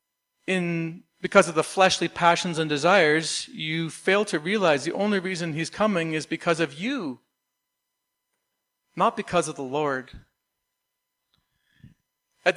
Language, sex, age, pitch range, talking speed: English, male, 40-59, 150-190 Hz, 125 wpm